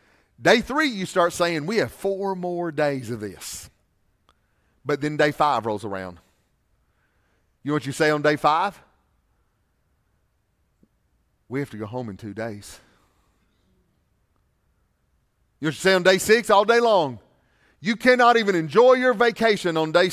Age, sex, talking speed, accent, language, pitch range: 40-59, male, 150 wpm, American, English, 105-165 Hz